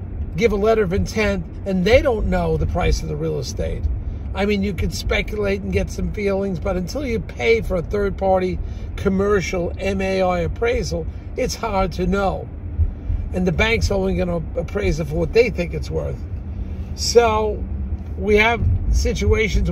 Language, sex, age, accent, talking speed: English, male, 50-69, American, 175 wpm